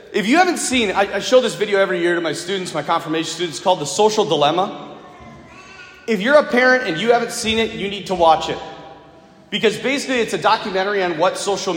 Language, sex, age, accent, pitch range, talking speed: English, male, 30-49, American, 195-270 Hz, 220 wpm